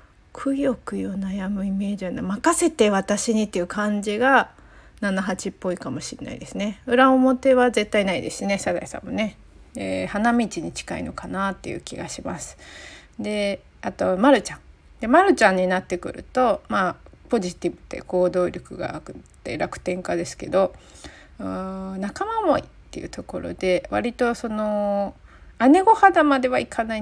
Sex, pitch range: female, 180-220 Hz